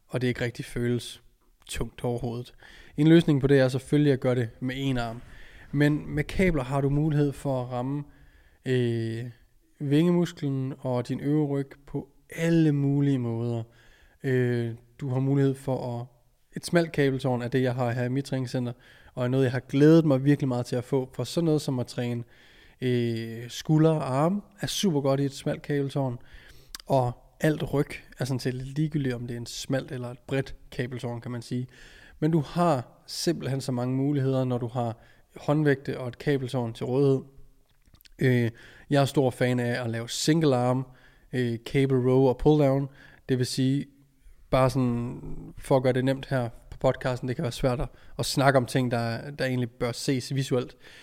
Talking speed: 190 wpm